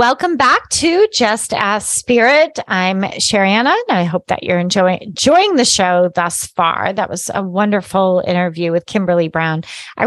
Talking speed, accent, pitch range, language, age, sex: 165 wpm, American, 175-220 Hz, English, 30-49, female